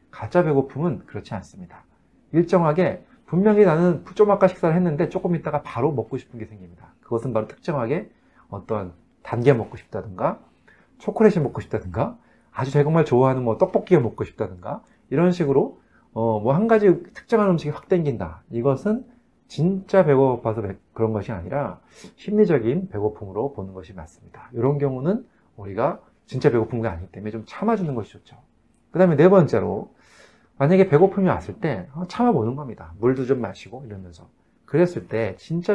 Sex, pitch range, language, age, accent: male, 110-175 Hz, Korean, 40-59, native